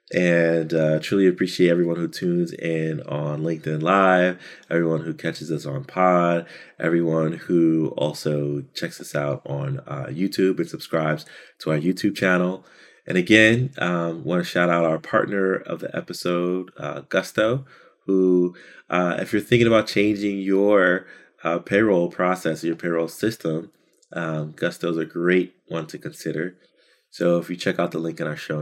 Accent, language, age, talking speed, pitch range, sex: American, English, 30-49, 165 wpm, 80-95 Hz, male